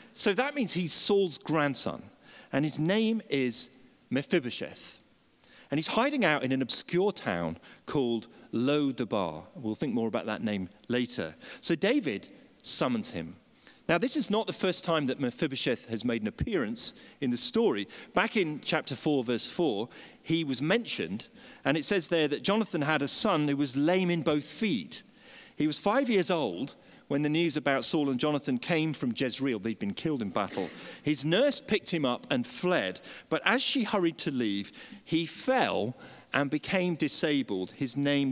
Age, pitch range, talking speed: 40-59, 125-195 Hz, 175 wpm